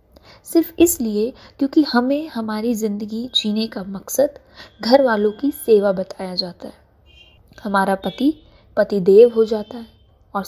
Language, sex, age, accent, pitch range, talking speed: Hindi, female, 20-39, native, 185-240 Hz, 130 wpm